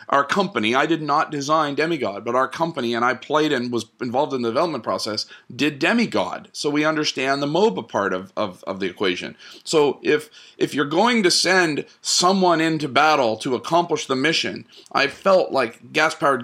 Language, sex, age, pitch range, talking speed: English, male, 40-59, 125-160 Hz, 190 wpm